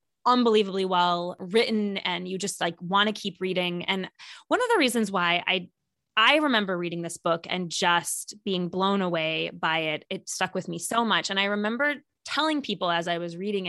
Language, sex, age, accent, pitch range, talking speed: English, female, 20-39, American, 180-230 Hz, 195 wpm